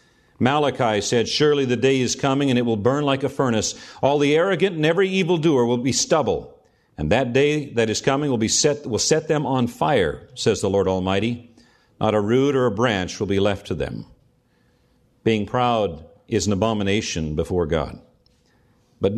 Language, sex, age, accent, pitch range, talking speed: English, male, 50-69, American, 110-135 Hz, 180 wpm